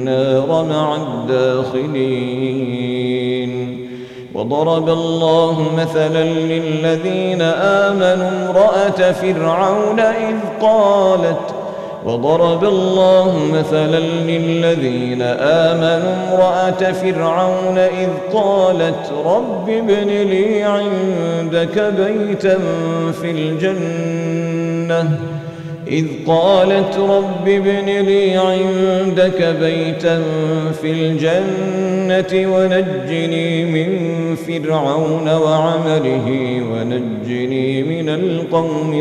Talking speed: 70 wpm